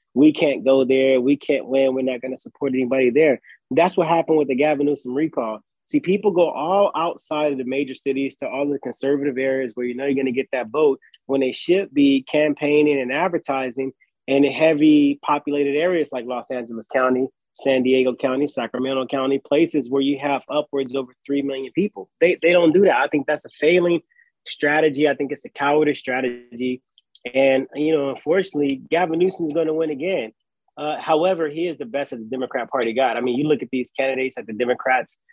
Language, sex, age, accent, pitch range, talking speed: English, male, 20-39, American, 130-155 Hz, 210 wpm